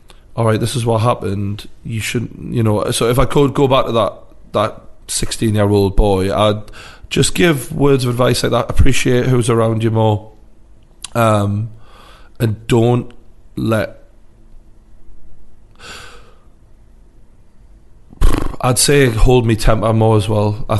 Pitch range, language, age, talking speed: 105-115 Hz, English, 30-49, 140 wpm